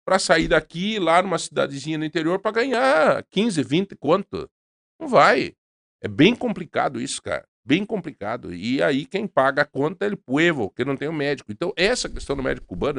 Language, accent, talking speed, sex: Portuguese, Brazilian, 200 wpm, male